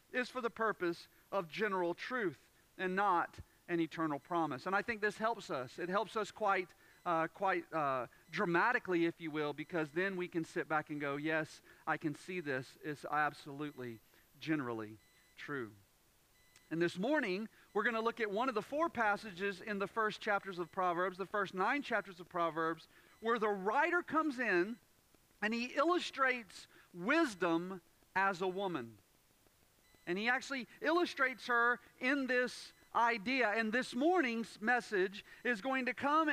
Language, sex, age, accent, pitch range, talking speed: English, male, 40-59, American, 160-235 Hz, 160 wpm